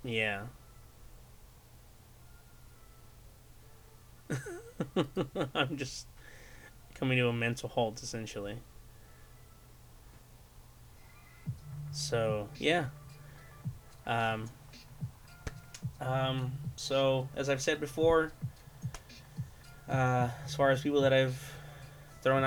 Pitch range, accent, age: 120-140 Hz, American, 20-39